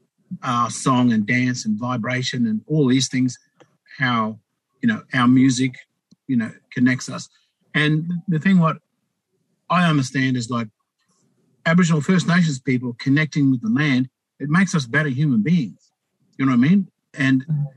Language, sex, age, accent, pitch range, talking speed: English, male, 50-69, Australian, 130-175 Hz, 160 wpm